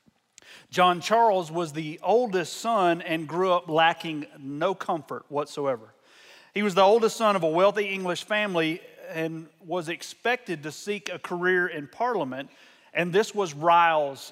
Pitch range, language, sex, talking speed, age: 160-210 Hz, English, male, 150 wpm, 30-49